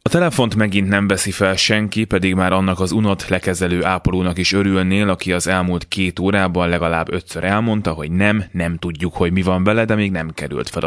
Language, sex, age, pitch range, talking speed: Hungarian, male, 20-39, 85-105 Hz, 205 wpm